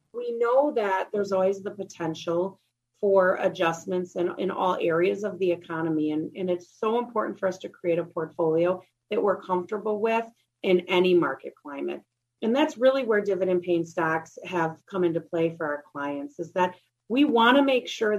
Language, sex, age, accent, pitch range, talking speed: English, female, 30-49, American, 170-215 Hz, 185 wpm